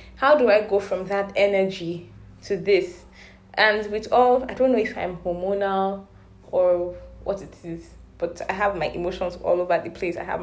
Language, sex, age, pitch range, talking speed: English, female, 10-29, 175-230 Hz, 190 wpm